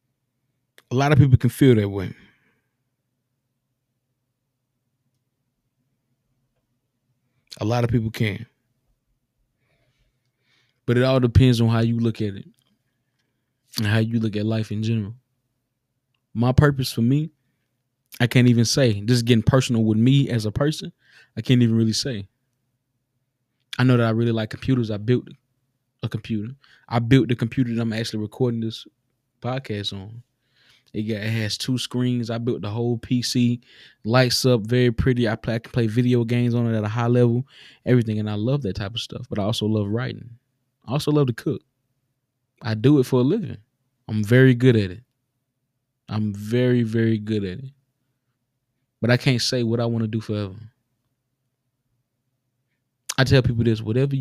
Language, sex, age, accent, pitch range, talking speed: English, male, 20-39, American, 115-130 Hz, 165 wpm